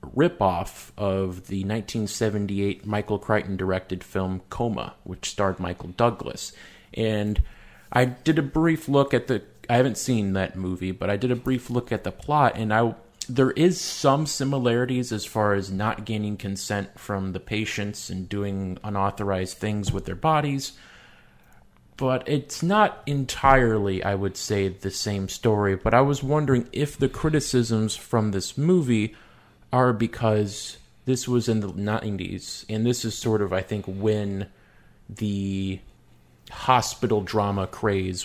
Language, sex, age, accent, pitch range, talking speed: English, male, 30-49, American, 95-120 Hz, 150 wpm